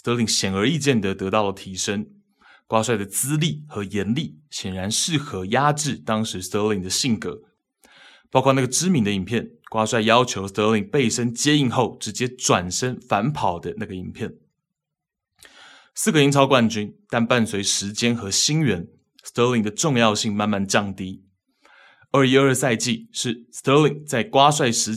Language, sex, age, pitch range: Chinese, male, 20-39, 100-140 Hz